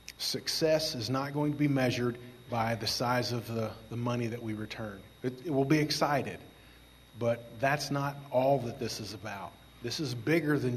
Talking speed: 190 wpm